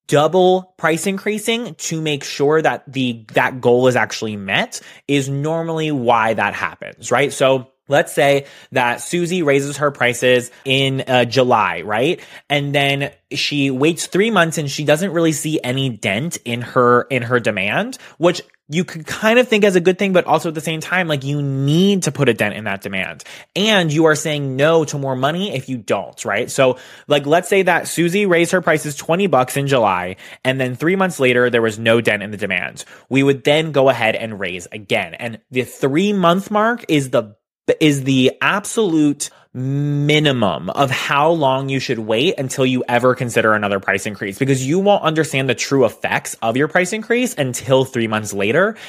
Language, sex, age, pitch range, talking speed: English, male, 20-39, 120-160 Hz, 195 wpm